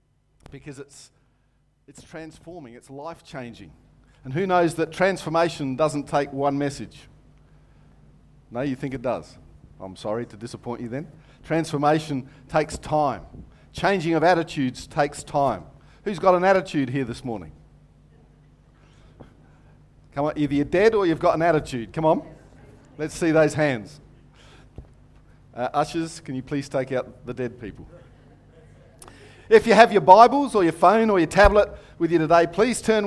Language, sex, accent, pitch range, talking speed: English, male, Australian, 130-160 Hz, 150 wpm